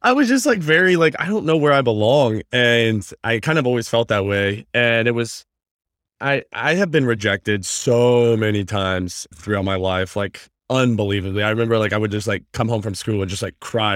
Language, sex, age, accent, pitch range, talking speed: English, male, 20-39, American, 105-135 Hz, 220 wpm